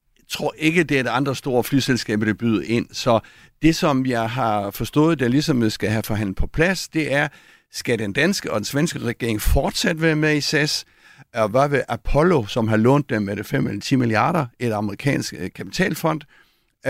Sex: male